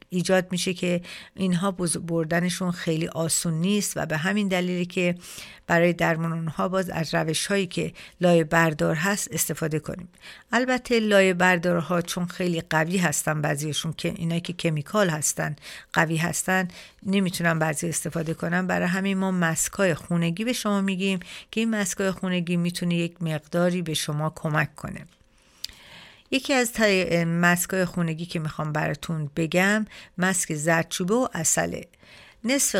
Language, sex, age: Persian, female, 50-69